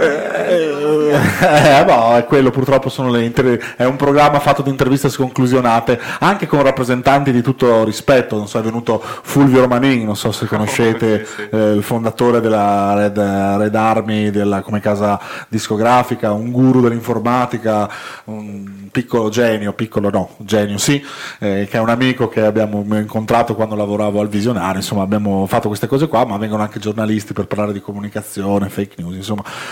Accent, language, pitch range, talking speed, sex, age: native, Italian, 105-130 Hz, 175 wpm, male, 30-49